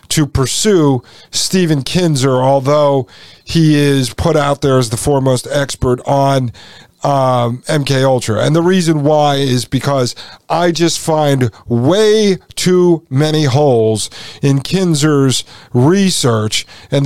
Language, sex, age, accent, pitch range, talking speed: English, male, 40-59, American, 125-155 Hz, 125 wpm